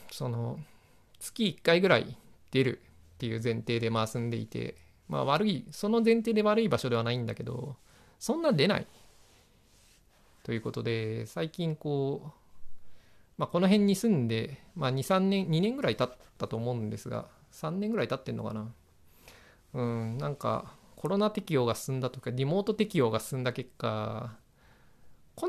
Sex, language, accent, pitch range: male, Japanese, native, 115-155 Hz